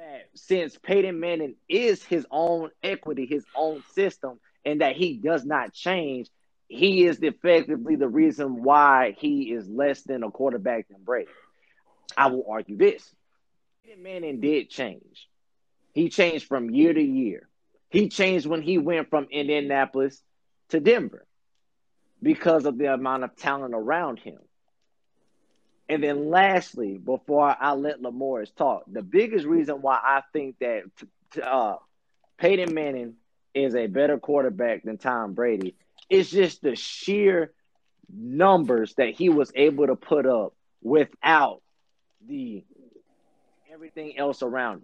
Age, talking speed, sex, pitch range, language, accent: 30-49, 140 wpm, male, 140-195 Hz, English, American